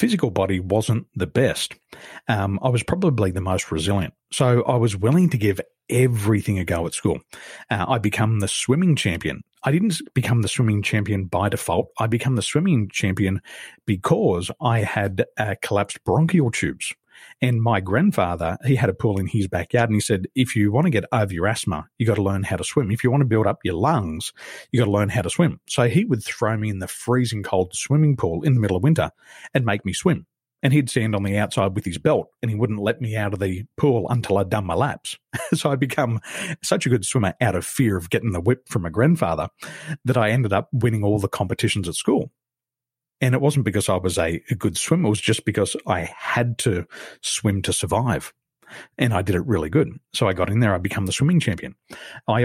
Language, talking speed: English, 225 wpm